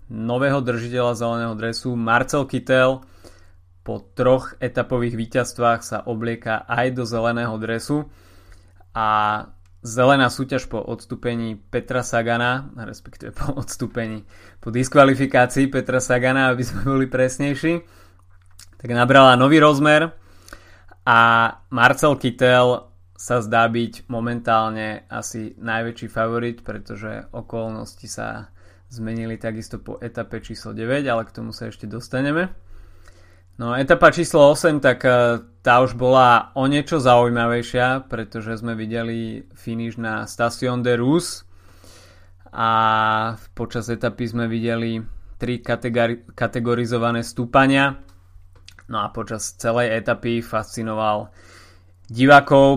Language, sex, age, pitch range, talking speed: Slovak, male, 20-39, 110-125 Hz, 110 wpm